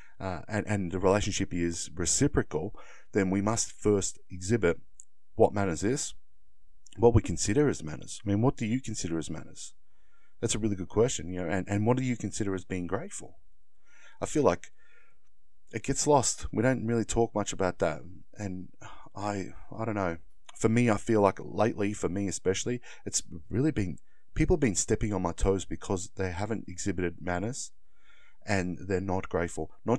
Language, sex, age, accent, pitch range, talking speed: English, male, 30-49, Australian, 90-110 Hz, 180 wpm